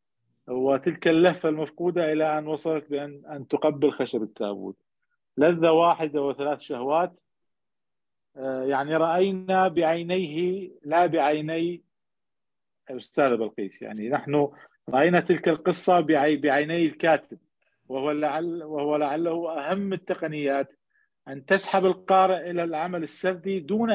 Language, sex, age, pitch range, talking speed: Arabic, male, 50-69, 135-170 Hz, 110 wpm